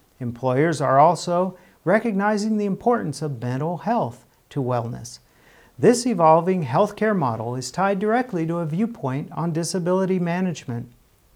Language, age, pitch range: English, 50-69, 130-195 Hz